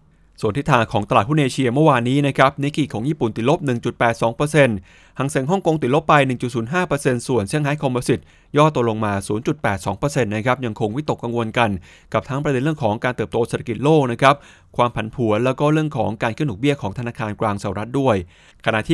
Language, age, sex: English, 20-39, male